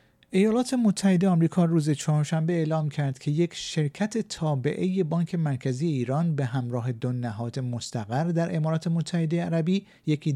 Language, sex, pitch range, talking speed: Persian, male, 135-175 Hz, 140 wpm